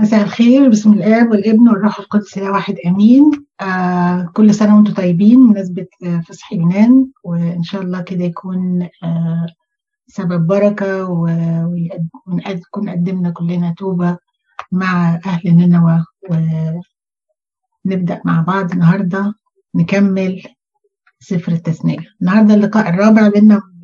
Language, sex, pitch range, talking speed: Arabic, female, 180-215 Hz, 110 wpm